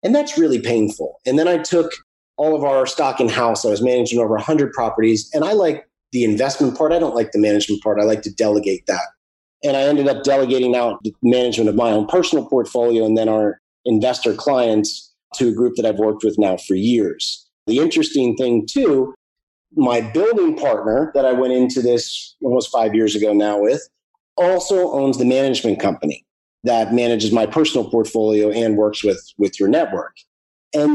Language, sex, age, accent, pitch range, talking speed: English, male, 30-49, American, 110-150 Hz, 190 wpm